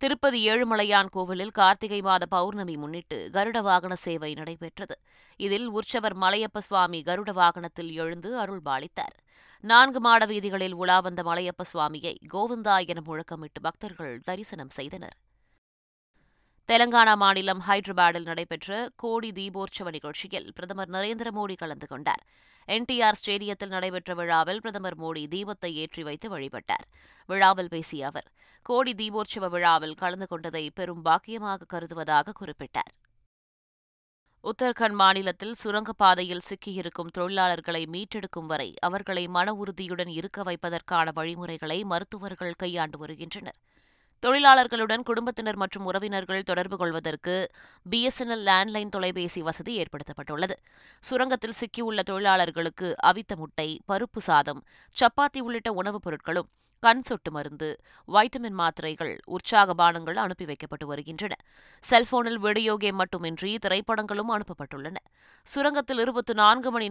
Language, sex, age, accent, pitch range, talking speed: Tamil, female, 20-39, native, 170-215 Hz, 105 wpm